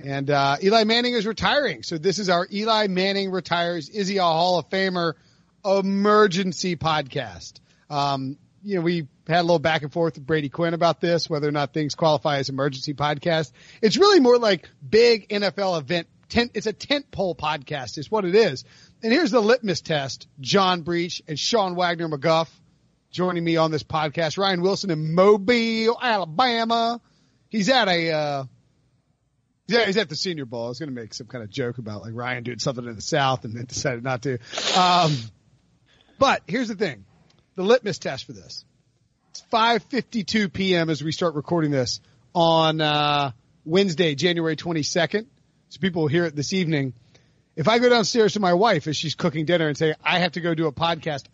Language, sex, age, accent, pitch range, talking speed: English, male, 40-59, American, 145-190 Hz, 190 wpm